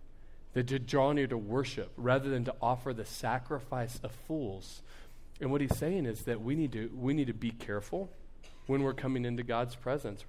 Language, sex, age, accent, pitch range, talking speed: English, male, 40-59, American, 115-145 Hz, 185 wpm